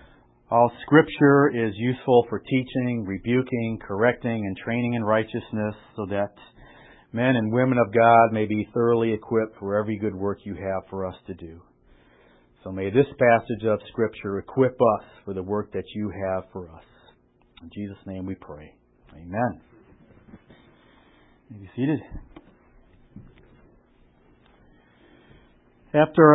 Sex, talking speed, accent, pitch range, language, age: male, 135 wpm, American, 110-145 Hz, English, 50-69